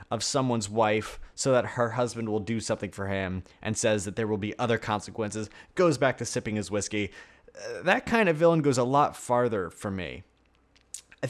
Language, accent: English, American